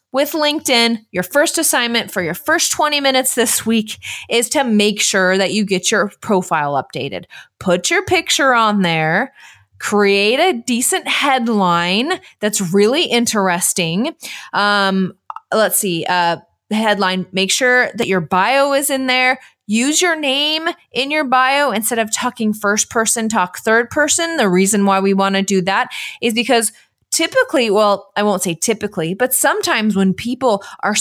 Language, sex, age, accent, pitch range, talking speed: English, female, 20-39, American, 195-280 Hz, 160 wpm